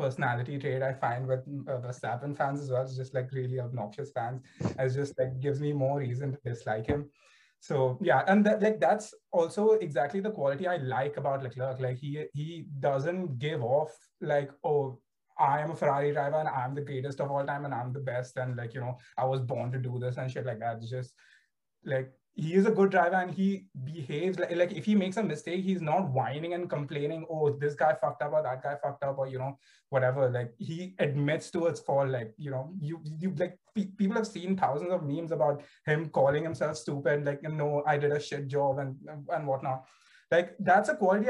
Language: English